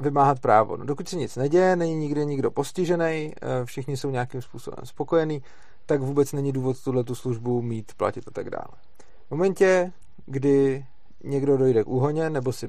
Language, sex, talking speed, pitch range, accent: Czech, male, 170 wpm, 120-145 Hz, native